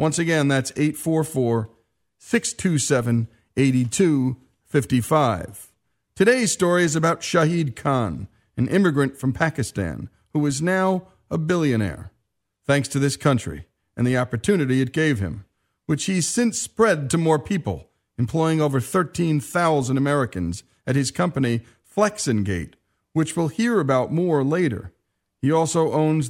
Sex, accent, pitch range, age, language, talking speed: male, American, 120-160 Hz, 40-59, English, 125 wpm